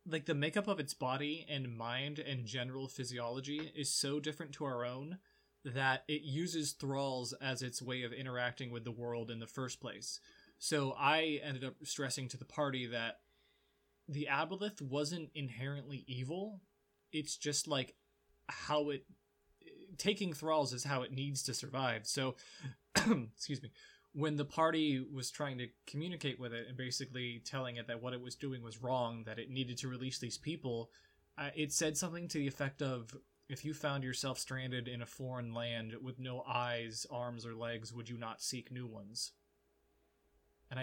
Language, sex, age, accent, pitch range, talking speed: English, male, 20-39, American, 125-150 Hz, 175 wpm